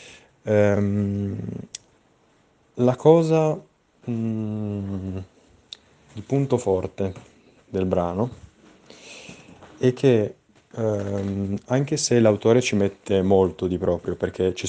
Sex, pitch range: male, 95-115 Hz